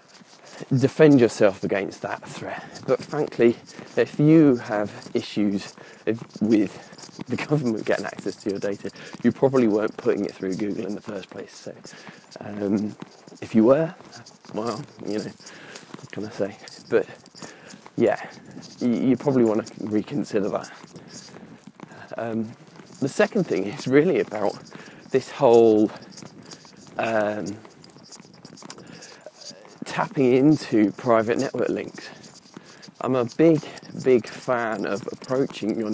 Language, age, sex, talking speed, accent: English, 20-39, male, 125 wpm, British